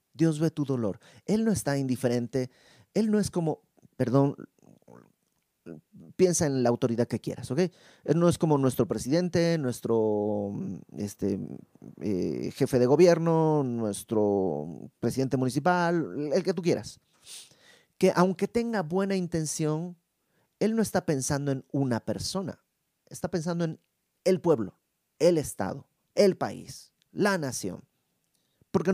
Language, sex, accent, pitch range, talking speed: Spanish, male, Mexican, 110-160 Hz, 130 wpm